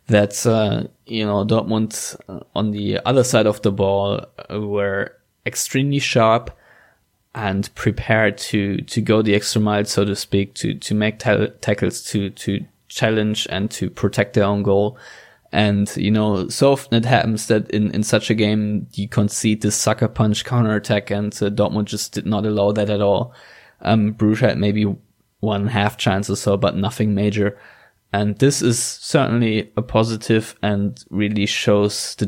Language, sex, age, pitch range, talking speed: English, male, 20-39, 100-110 Hz, 165 wpm